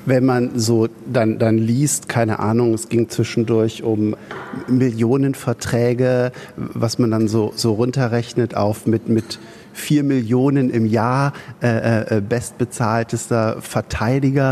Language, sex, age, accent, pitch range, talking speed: German, male, 50-69, German, 110-130 Hz, 120 wpm